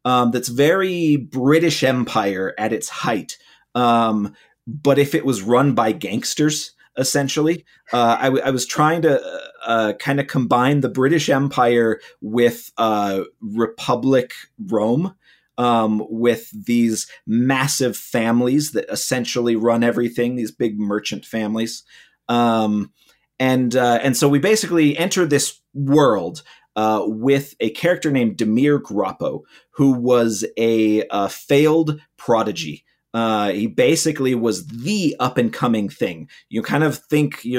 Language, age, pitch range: English, 30-49, 110-145 Hz